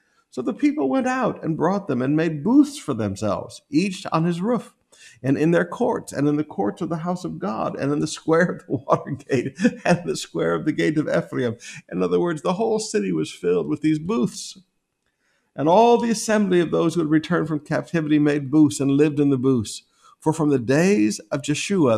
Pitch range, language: 125-175 Hz, English